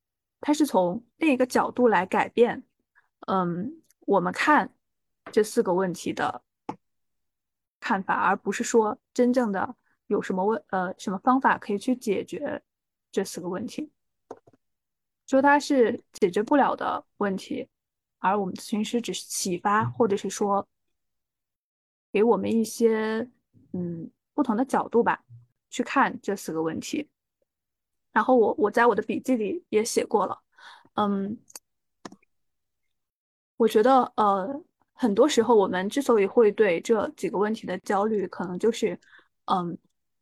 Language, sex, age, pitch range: Chinese, female, 20-39, 195-250 Hz